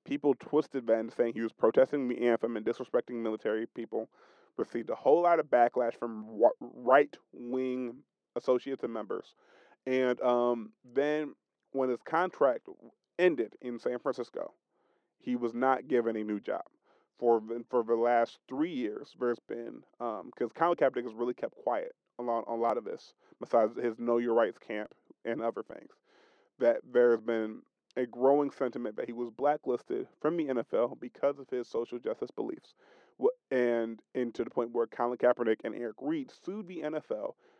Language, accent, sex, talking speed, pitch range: English, American, male, 170 wpm, 120-145 Hz